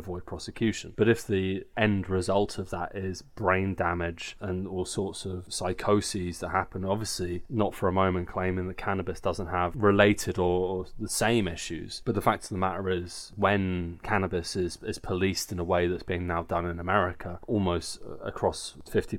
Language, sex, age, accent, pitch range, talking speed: English, male, 20-39, British, 90-100 Hz, 185 wpm